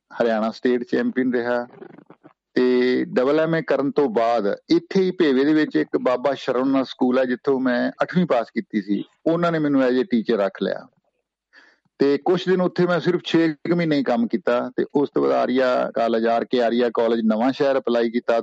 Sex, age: male, 50-69